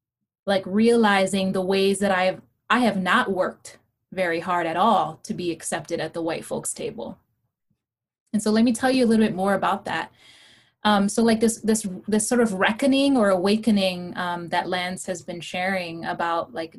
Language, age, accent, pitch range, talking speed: English, 20-39, American, 180-220 Hz, 195 wpm